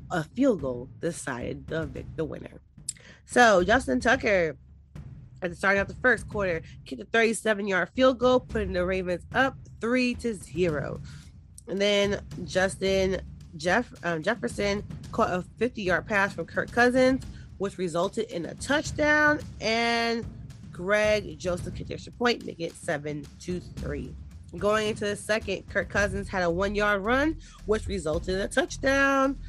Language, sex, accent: English, female, American